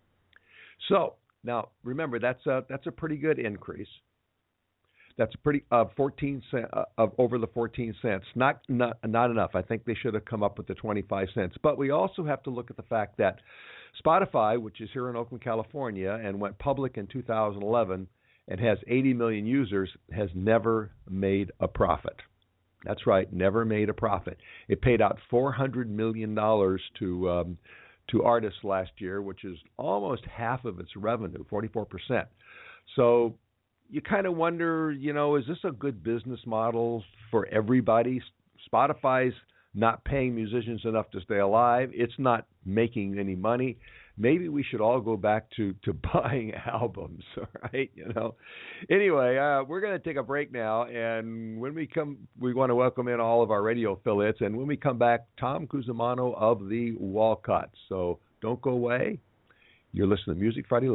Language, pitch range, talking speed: English, 105-125 Hz, 180 wpm